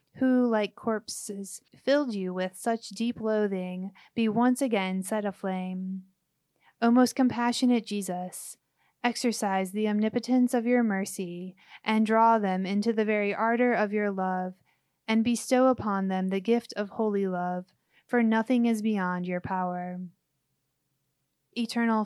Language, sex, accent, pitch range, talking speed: English, female, American, 185-230 Hz, 135 wpm